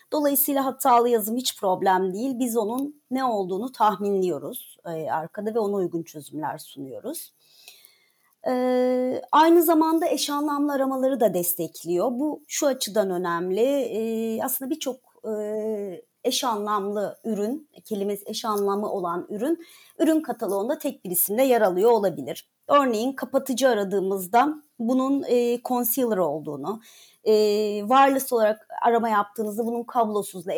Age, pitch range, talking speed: 40-59, 205-275 Hz, 115 wpm